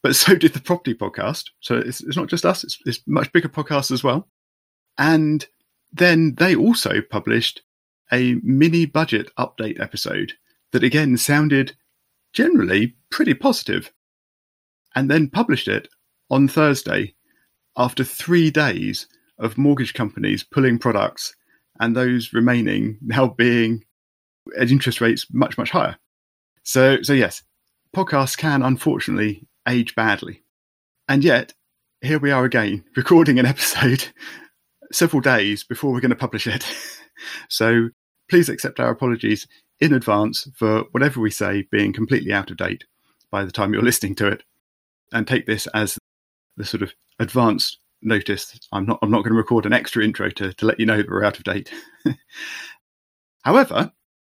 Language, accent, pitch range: English, British, 110-150 Hz